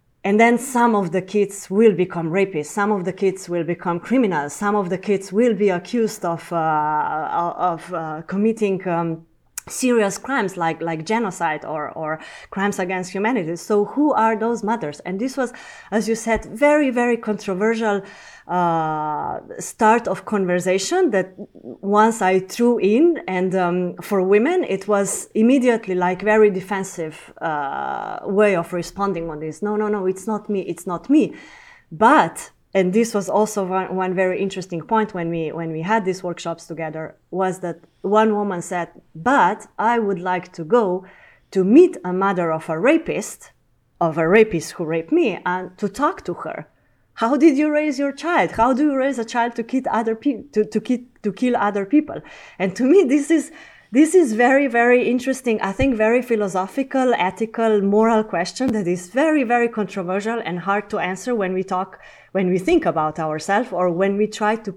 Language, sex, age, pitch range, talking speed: English, female, 30-49, 180-235 Hz, 180 wpm